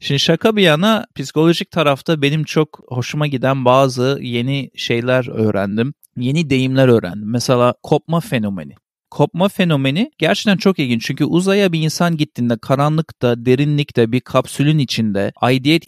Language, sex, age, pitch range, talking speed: Turkish, male, 40-59, 130-170 Hz, 135 wpm